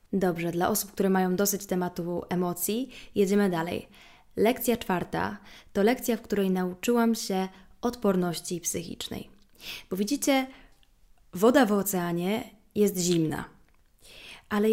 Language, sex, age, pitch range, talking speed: Polish, female, 20-39, 175-215 Hz, 115 wpm